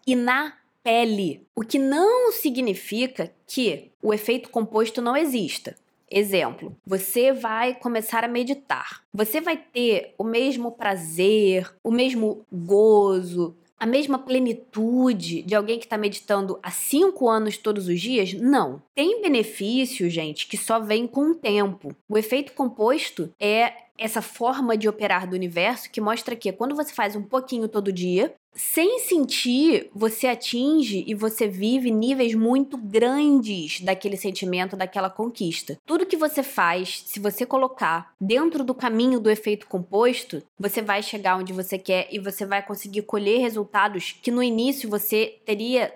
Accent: Brazilian